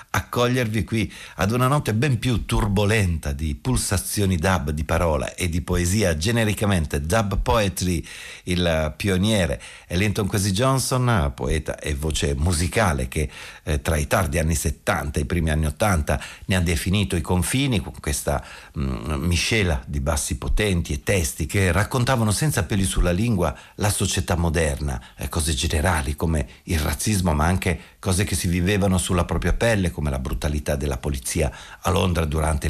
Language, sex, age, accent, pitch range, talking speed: Italian, male, 50-69, native, 75-105 Hz, 160 wpm